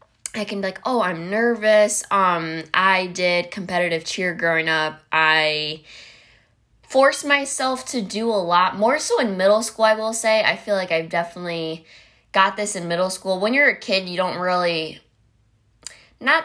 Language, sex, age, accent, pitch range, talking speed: English, female, 20-39, American, 160-200 Hz, 170 wpm